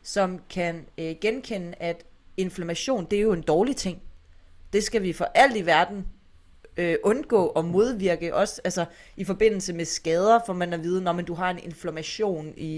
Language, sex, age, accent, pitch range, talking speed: Danish, female, 30-49, native, 160-200 Hz, 190 wpm